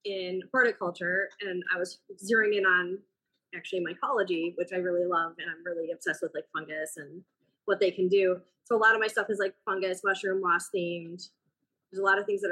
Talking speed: 210 wpm